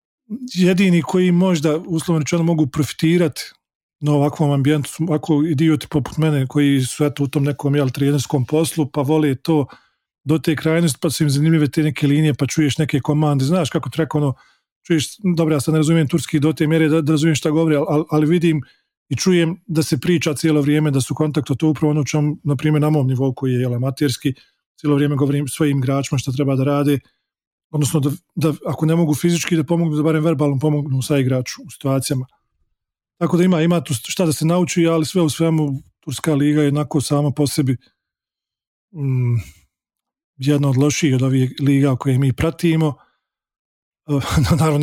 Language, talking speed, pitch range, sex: English, 190 wpm, 145-160 Hz, male